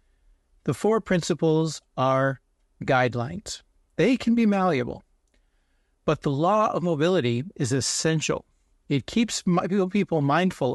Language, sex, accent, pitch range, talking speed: English, male, American, 120-175 Hz, 110 wpm